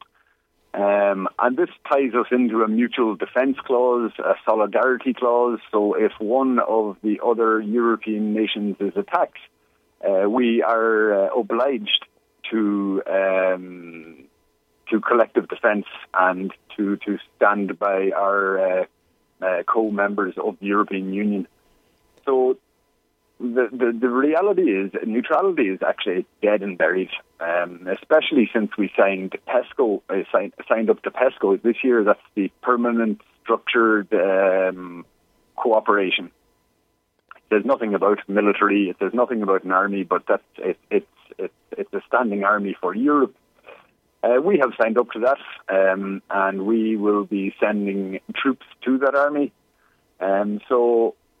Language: English